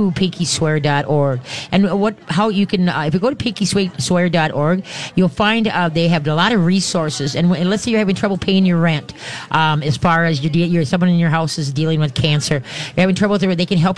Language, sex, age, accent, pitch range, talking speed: English, female, 40-59, American, 145-185 Hz, 235 wpm